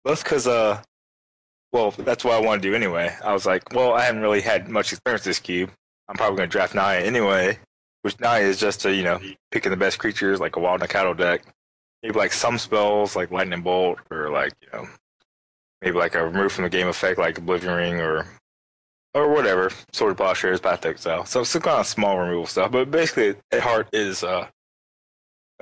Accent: American